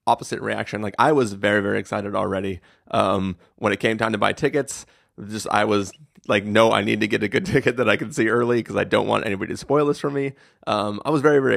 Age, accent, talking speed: 30-49, American, 255 wpm